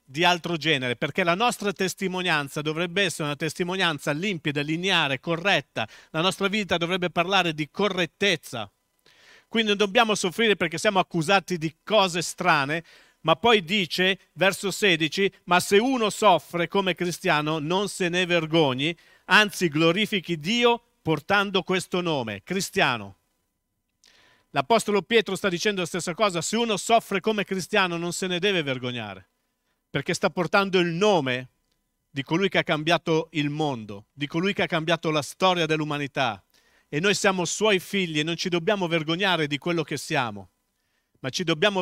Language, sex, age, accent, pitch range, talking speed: Italian, male, 50-69, native, 145-195 Hz, 155 wpm